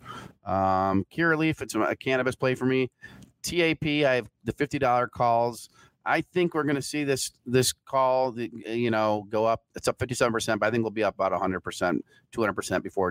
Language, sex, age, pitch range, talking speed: English, male, 40-59, 100-130 Hz, 190 wpm